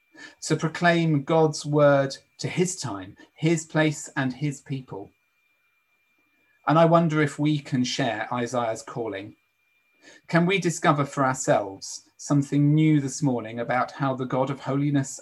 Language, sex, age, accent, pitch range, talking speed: English, male, 40-59, British, 130-150 Hz, 140 wpm